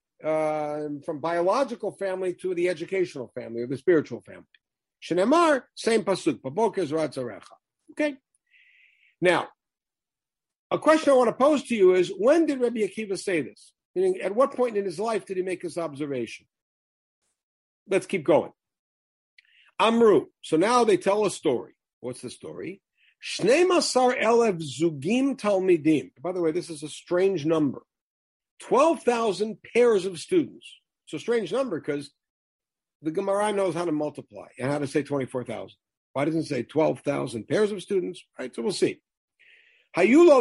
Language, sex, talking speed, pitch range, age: English, male, 150 wpm, 160-245 Hz, 50-69